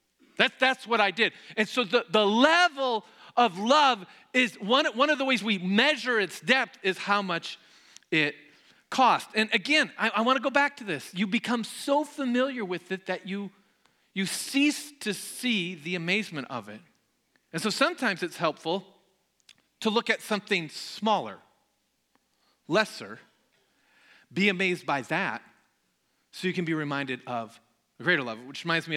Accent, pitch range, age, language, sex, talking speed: American, 150-220 Hz, 40-59, English, male, 165 wpm